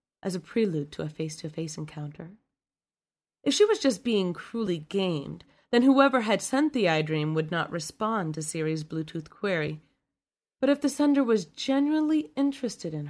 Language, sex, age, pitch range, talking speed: English, female, 30-49, 160-225 Hz, 160 wpm